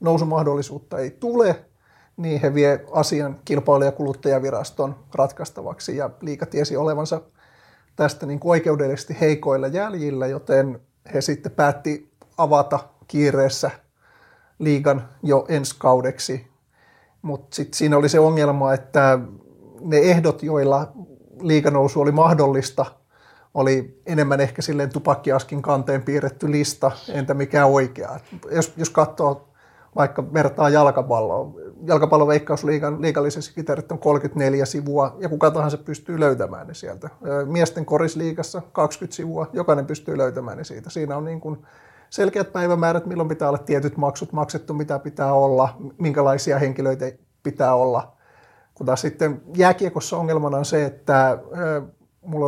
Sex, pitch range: male, 140-155 Hz